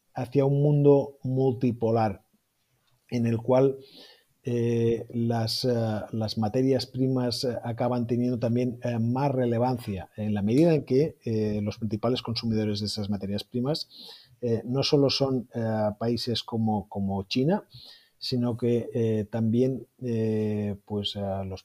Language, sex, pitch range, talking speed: Spanish, male, 110-130 Hz, 110 wpm